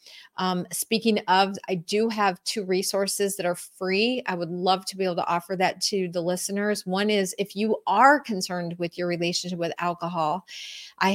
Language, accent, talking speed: English, American, 190 wpm